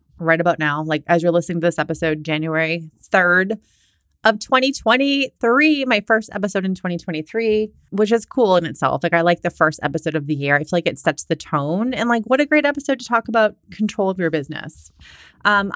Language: English